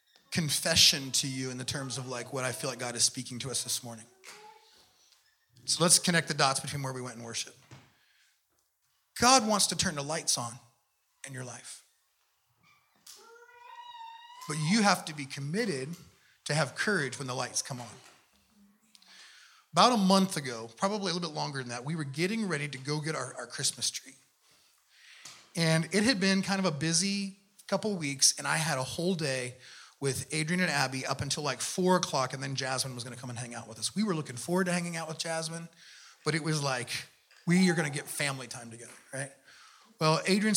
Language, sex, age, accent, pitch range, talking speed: English, male, 30-49, American, 130-190 Hz, 205 wpm